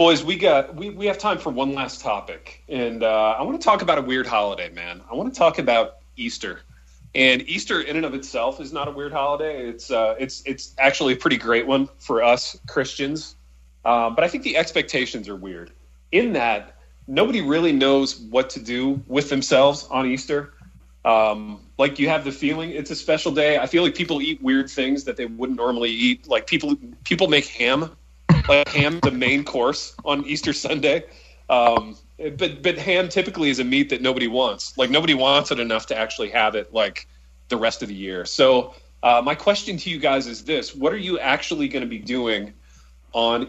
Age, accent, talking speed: 30-49, American, 205 wpm